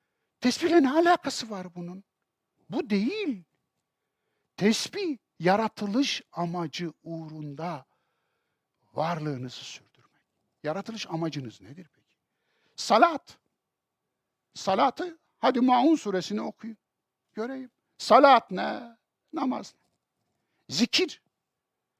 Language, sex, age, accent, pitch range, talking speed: English, male, 60-79, Turkish, 180-275 Hz, 80 wpm